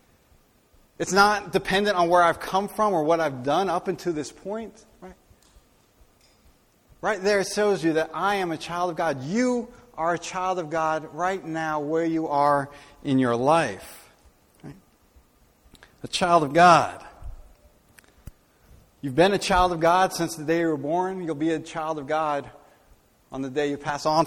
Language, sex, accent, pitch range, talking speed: English, male, American, 140-180 Hz, 175 wpm